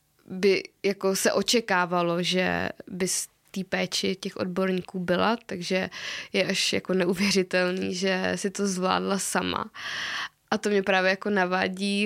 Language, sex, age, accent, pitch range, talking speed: Czech, female, 20-39, native, 195-235 Hz, 140 wpm